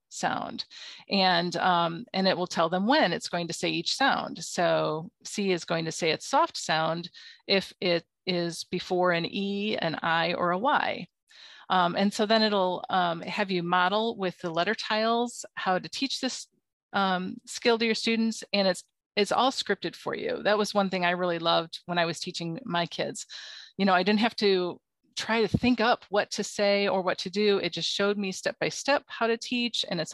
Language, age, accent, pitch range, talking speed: English, 40-59, American, 175-215 Hz, 205 wpm